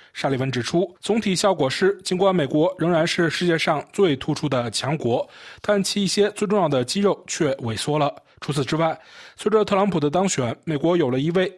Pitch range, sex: 140-190 Hz, male